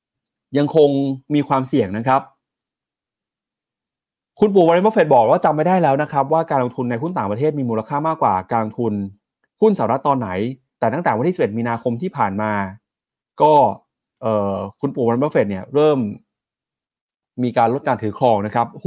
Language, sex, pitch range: Thai, male, 110-145 Hz